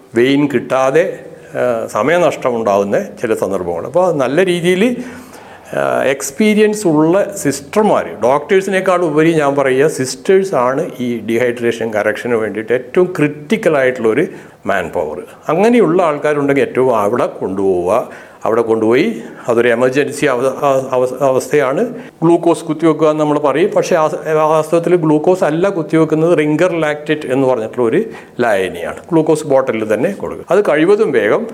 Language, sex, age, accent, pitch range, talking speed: Malayalam, male, 60-79, native, 130-175 Hz, 110 wpm